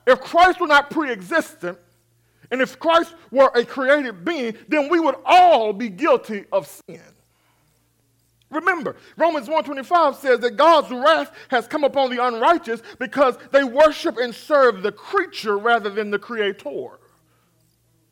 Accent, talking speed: American, 140 wpm